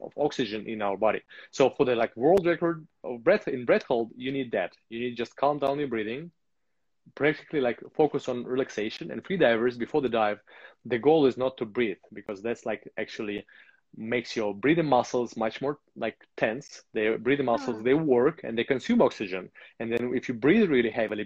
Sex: male